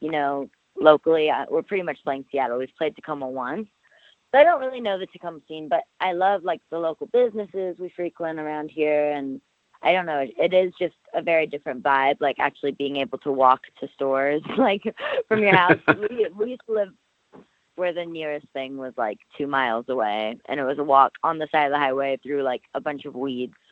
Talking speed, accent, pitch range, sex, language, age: 220 wpm, American, 145-210 Hz, female, English, 20-39